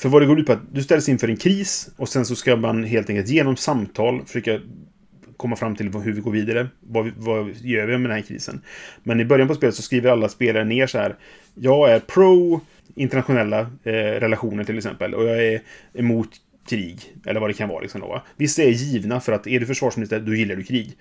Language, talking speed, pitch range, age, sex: Swedish, 230 wpm, 110-135 Hz, 30-49, male